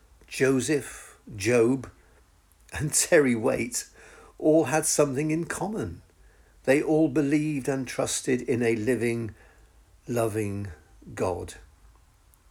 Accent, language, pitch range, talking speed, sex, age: British, English, 100-140 Hz, 95 wpm, male, 50-69